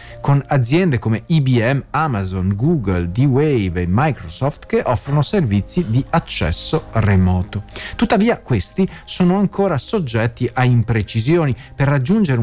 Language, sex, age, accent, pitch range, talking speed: Italian, male, 50-69, native, 105-160 Hz, 115 wpm